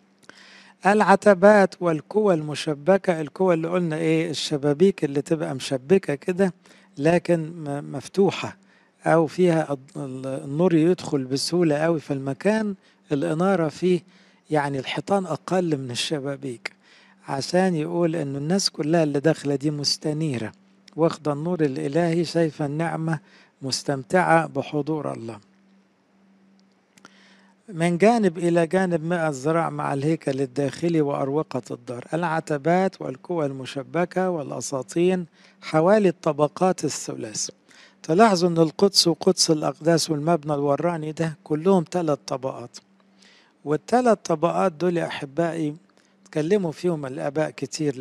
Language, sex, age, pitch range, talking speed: English, male, 60-79, 145-185 Hz, 105 wpm